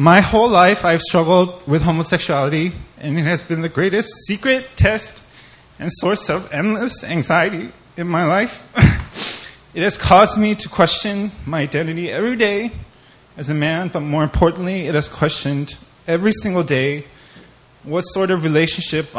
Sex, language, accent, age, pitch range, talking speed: male, English, American, 20-39, 150-185 Hz, 155 wpm